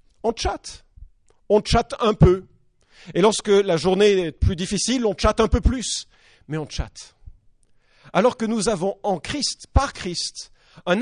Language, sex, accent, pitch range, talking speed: English, male, French, 140-205 Hz, 165 wpm